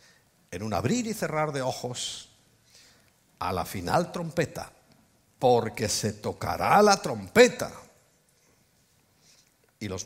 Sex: male